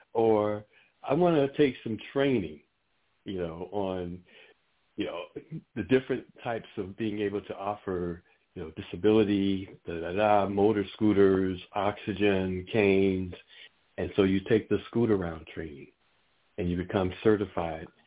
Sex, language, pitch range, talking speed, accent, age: male, English, 90-125 Hz, 140 wpm, American, 60-79